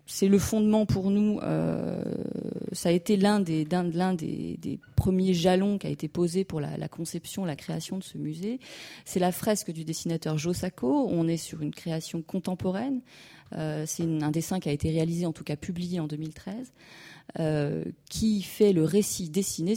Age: 30-49